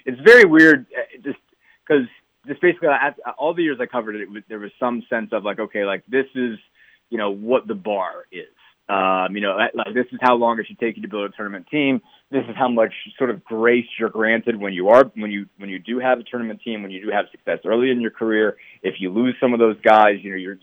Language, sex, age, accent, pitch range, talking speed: English, male, 30-49, American, 105-125 Hz, 260 wpm